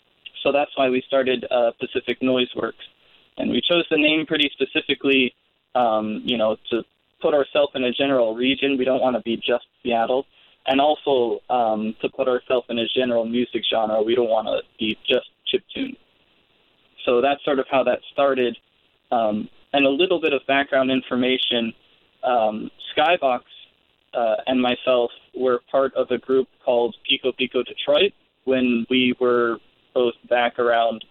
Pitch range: 115-135 Hz